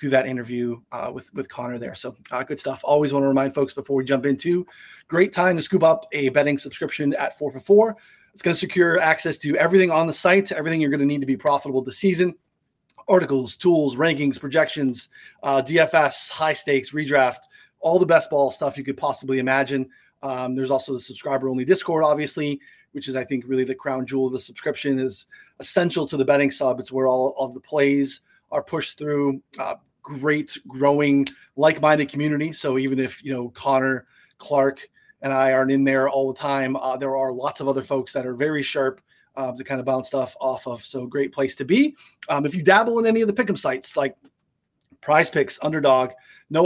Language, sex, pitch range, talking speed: English, male, 135-160 Hz, 210 wpm